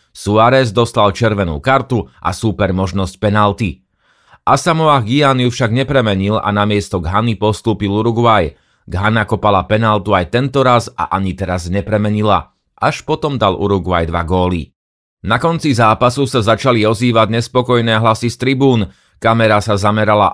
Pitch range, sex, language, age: 100-120 Hz, male, Slovak, 30-49